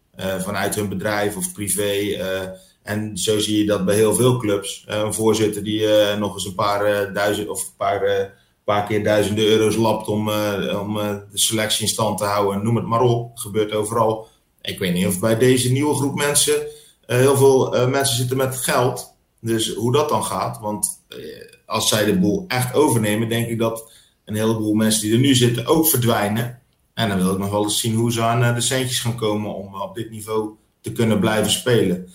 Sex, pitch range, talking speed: male, 105-115 Hz, 220 wpm